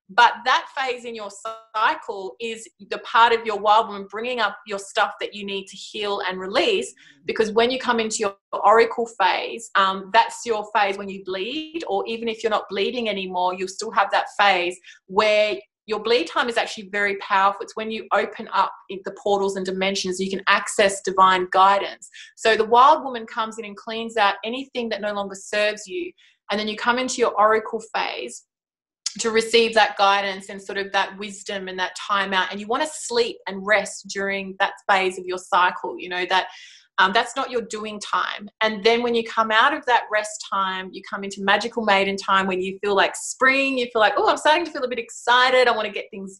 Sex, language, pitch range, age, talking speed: female, English, 195-235 Hz, 20-39, 215 wpm